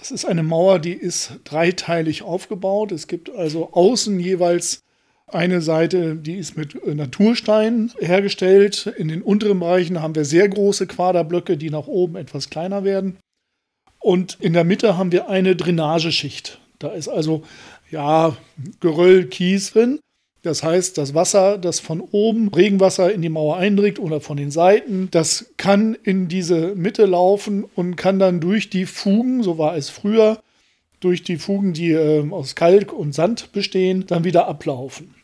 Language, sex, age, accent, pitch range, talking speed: German, male, 40-59, German, 160-200 Hz, 160 wpm